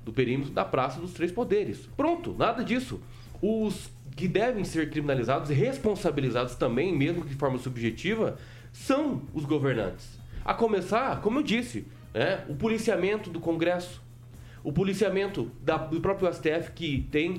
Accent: Brazilian